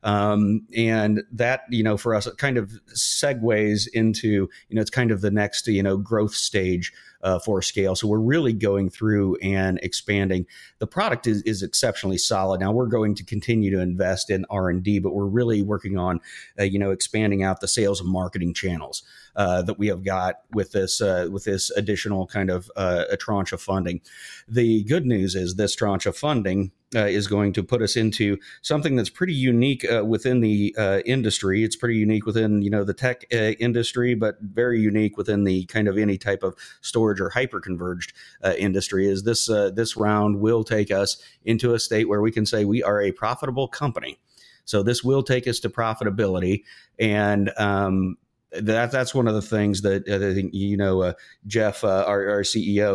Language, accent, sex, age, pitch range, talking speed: English, American, male, 30-49, 95-110 Hz, 200 wpm